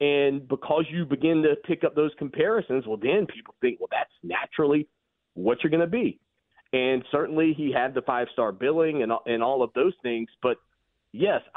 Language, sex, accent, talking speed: English, male, American, 185 wpm